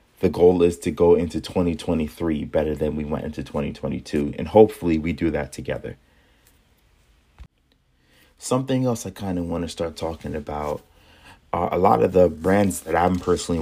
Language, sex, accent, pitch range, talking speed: English, male, American, 80-90 Hz, 170 wpm